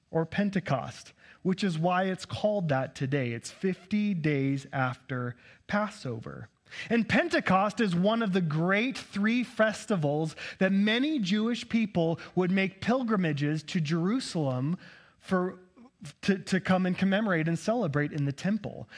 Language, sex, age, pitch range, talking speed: English, male, 30-49, 160-215 Hz, 135 wpm